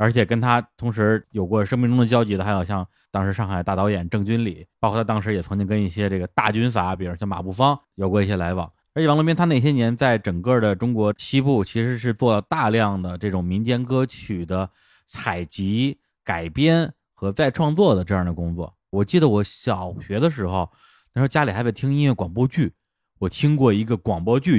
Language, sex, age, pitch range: Chinese, male, 30-49, 95-125 Hz